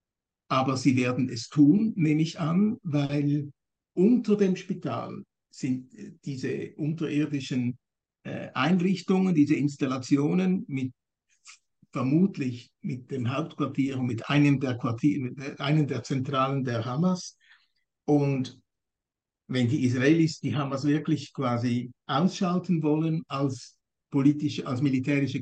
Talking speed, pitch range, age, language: 105 wpm, 130-165 Hz, 60-79, German